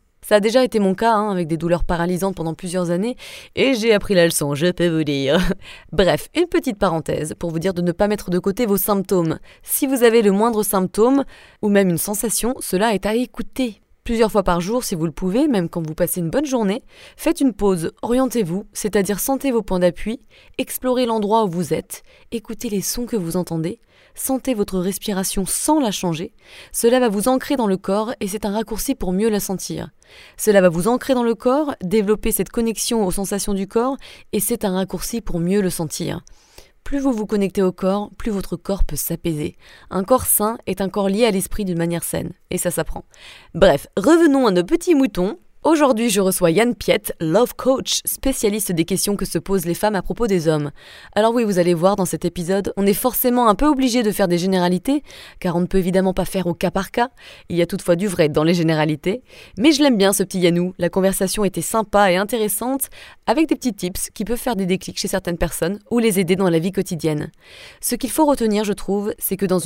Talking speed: 225 wpm